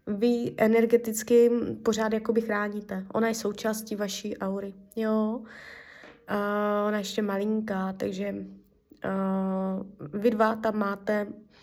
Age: 20-39